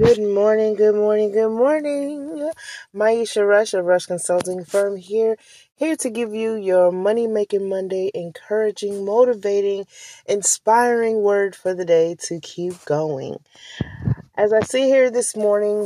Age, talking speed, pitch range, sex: 30-49, 135 wpm, 175-215 Hz, female